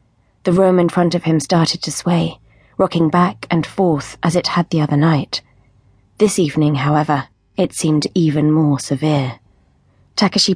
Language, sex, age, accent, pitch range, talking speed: English, female, 20-39, British, 140-175 Hz, 160 wpm